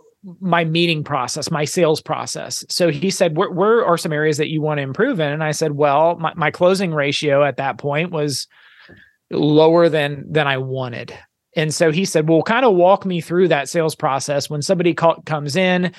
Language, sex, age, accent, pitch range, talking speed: English, male, 30-49, American, 150-185 Hz, 205 wpm